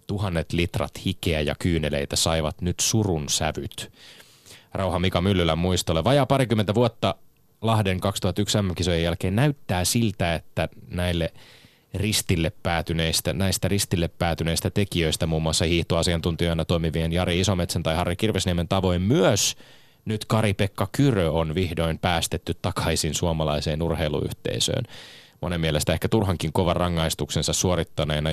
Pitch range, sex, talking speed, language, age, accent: 85-105 Hz, male, 120 wpm, Finnish, 30-49, native